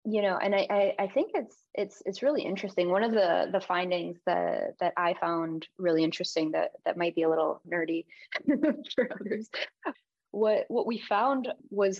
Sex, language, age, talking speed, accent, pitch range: female, English, 20-39, 185 wpm, American, 175-215 Hz